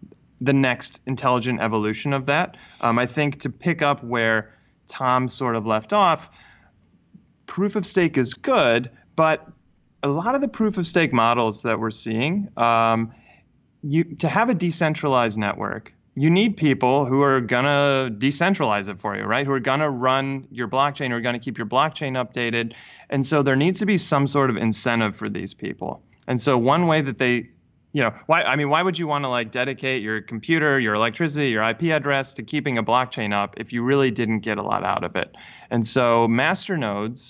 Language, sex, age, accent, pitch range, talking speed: English, male, 30-49, American, 115-150 Hz, 200 wpm